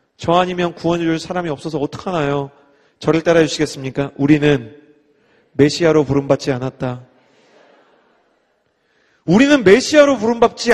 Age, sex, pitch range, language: 30-49, male, 140-220 Hz, Korean